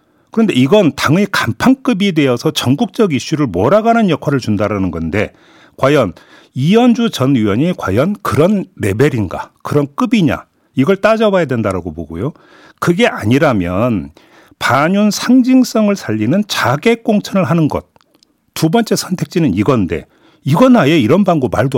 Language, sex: Korean, male